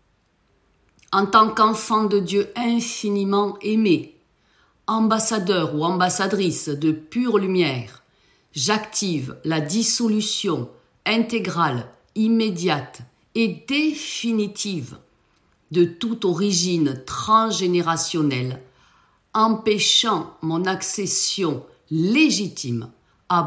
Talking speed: 75 wpm